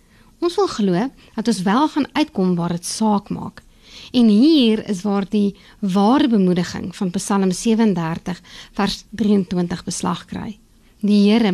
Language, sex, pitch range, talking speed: English, female, 190-245 Hz, 145 wpm